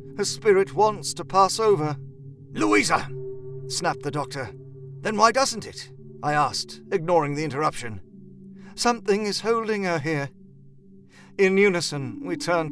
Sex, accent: male, British